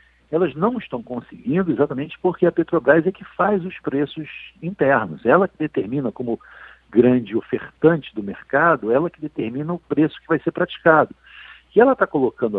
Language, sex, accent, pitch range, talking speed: Portuguese, male, Brazilian, 130-180 Hz, 165 wpm